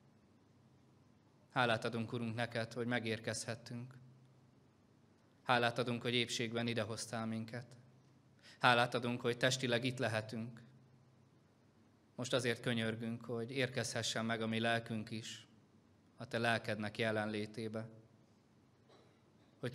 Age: 20-39